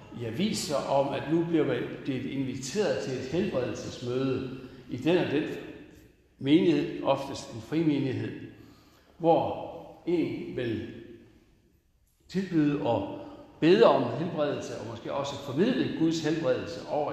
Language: Danish